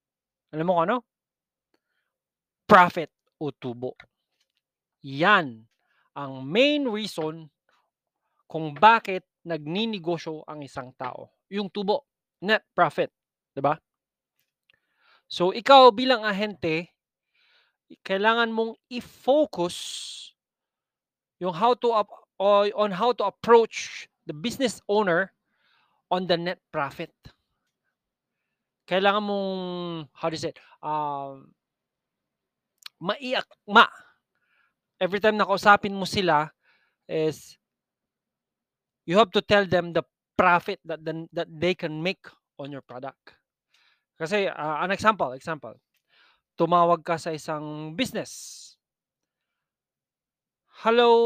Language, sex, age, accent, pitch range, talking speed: Filipino, male, 20-39, native, 160-210 Hz, 95 wpm